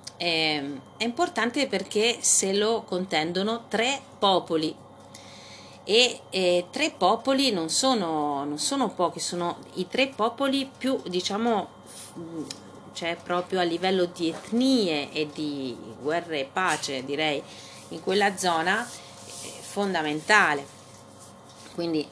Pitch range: 150-190 Hz